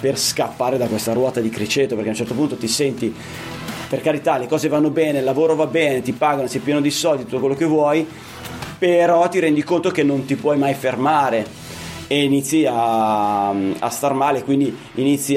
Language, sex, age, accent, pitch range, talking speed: Italian, male, 30-49, native, 125-160 Hz, 205 wpm